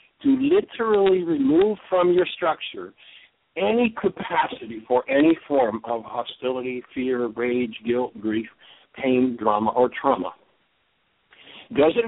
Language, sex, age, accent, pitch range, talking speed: English, male, 60-79, American, 125-195 Hz, 110 wpm